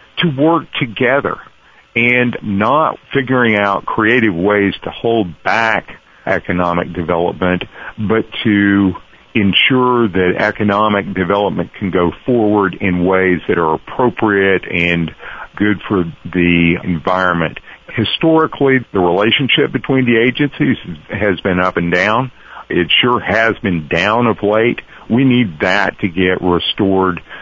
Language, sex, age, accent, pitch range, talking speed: English, male, 50-69, American, 90-110 Hz, 125 wpm